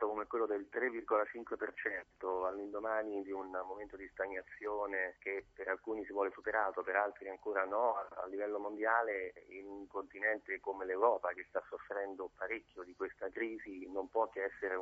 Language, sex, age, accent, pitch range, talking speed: Italian, male, 30-49, native, 95-105 Hz, 160 wpm